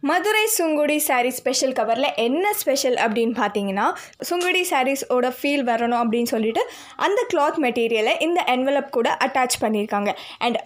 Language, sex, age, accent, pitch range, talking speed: Tamil, female, 20-39, native, 235-330 Hz, 135 wpm